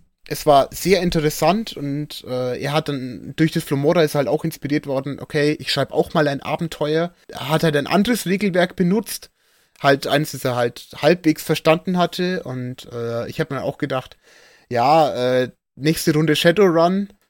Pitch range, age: 135-165 Hz, 30-49